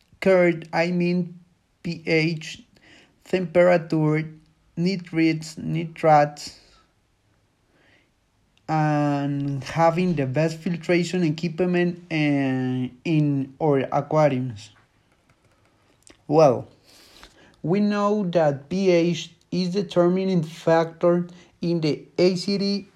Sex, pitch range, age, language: male, 140-185 Hz, 30-49, English